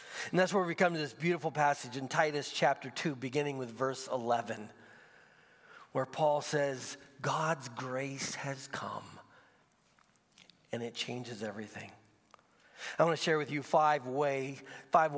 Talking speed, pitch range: 140 wpm, 130-180 Hz